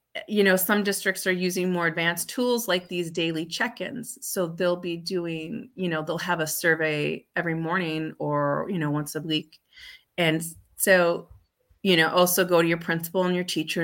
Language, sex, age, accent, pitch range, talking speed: English, female, 30-49, American, 155-185 Hz, 185 wpm